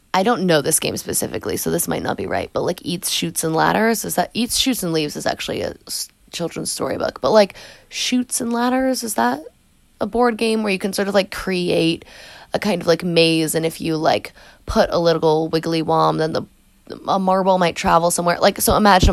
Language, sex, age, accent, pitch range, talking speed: English, female, 20-39, American, 160-225 Hz, 220 wpm